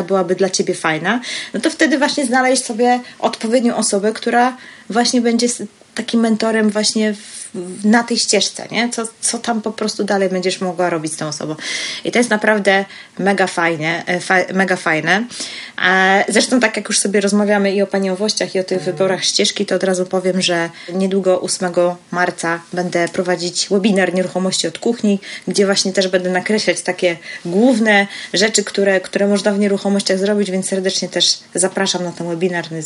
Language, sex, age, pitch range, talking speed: Polish, female, 20-39, 180-215 Hz, 175 wpm